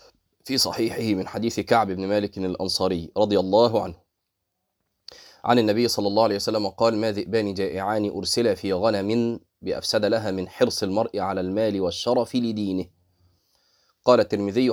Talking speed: 145 wpm